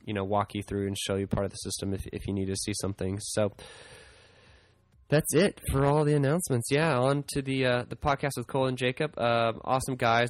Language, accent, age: English, American, 20-39